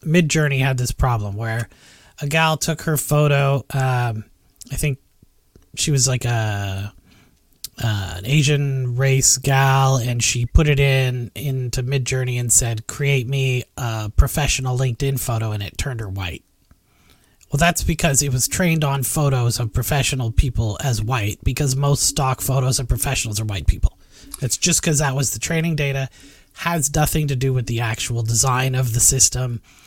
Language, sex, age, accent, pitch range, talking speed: English, male, 30-49, American, 115-145 Hz, 165 wpm